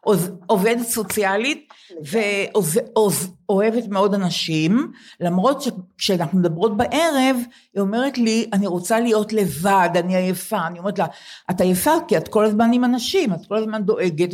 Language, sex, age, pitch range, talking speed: Hebrew, female, 50-69, 185-235 Hz, 140 wpm